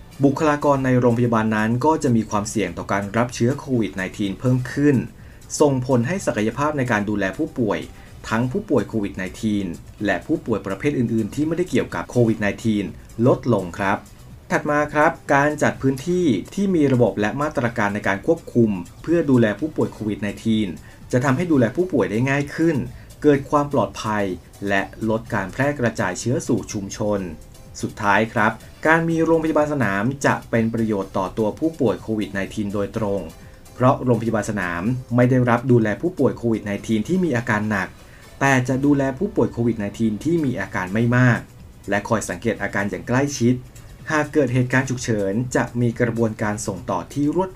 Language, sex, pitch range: Thai, male, 105-135 Hz